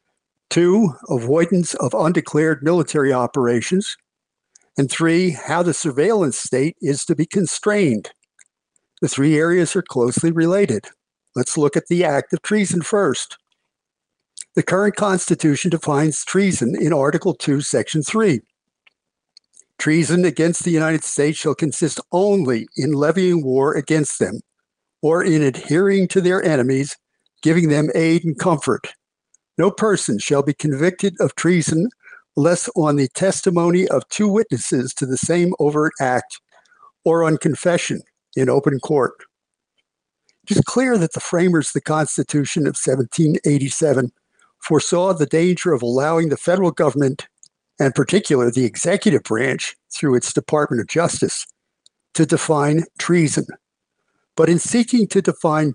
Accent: American